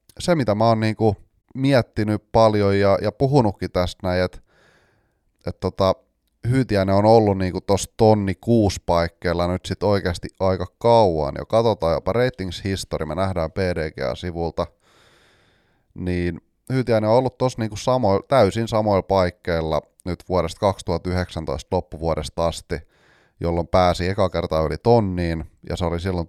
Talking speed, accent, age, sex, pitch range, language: 135 wpm, native, 30-49, male, 85-110 Hz, Finnish